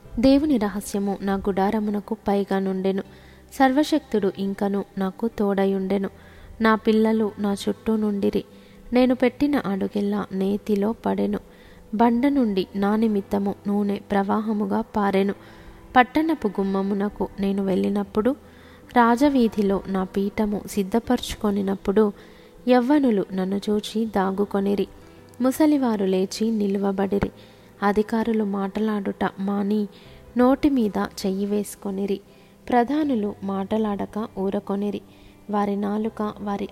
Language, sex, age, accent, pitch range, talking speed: Telugu, female, 20-39, native, 200-225 Hz, 90 wpm